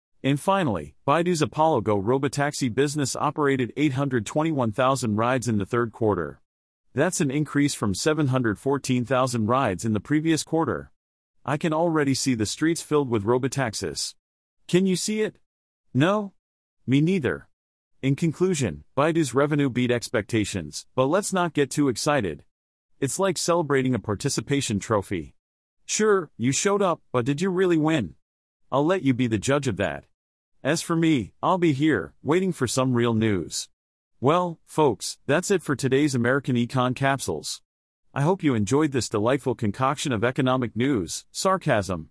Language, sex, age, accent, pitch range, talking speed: English, male, 40-59, American, 115-155 Hz, 150 wpm